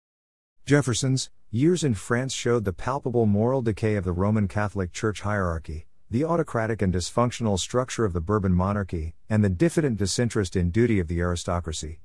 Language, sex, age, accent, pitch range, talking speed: English, male, 50-69, American, 90-115 Hz, 165 wpm